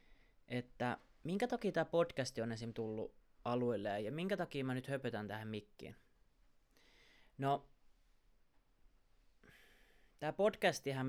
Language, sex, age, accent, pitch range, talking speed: Finnish, male, 20-39, native, 115-150 Hz, 110 wpm